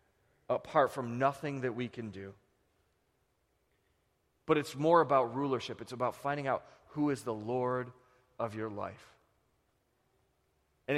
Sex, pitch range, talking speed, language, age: male, 85-130 Hz, 130 wpm, English, 30-49